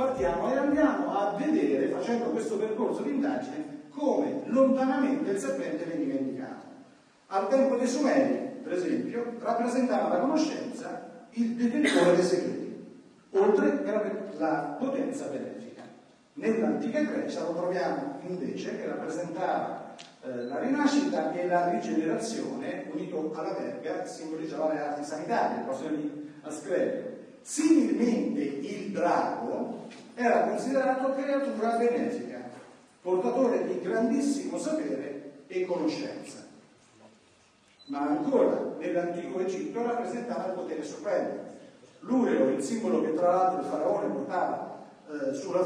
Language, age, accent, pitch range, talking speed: Italian, 40-59, native, 175-275 Hz, 115 wpm